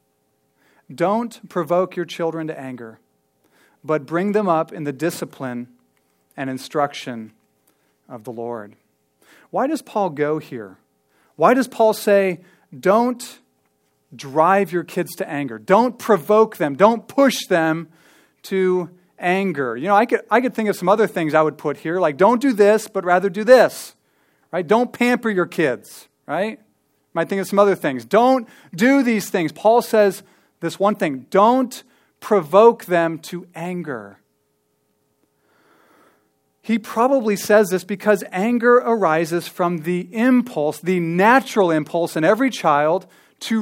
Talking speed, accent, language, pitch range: 150 wpm, American, English, 150-215 Hz